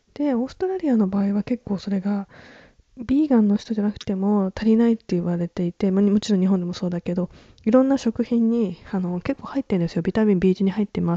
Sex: female